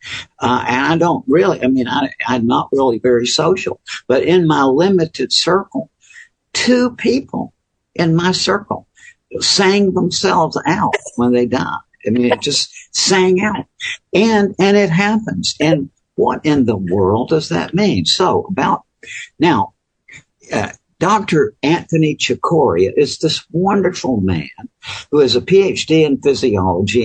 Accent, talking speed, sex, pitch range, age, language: American, 140 wpm, male, 120-190 Hz, 60-79, English